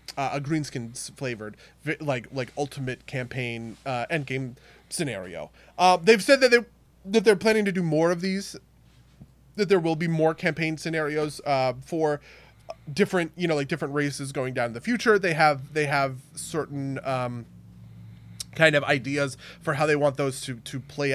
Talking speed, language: 175 wpm, English